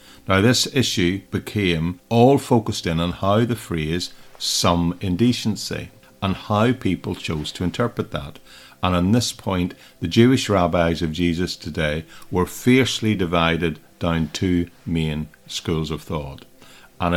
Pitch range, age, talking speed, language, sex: 85-105 Hz, 50-69, 140 wpm, English, male